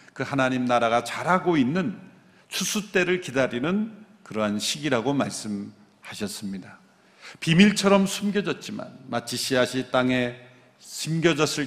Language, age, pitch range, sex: Korean, 50-69, 120-180 Hz, male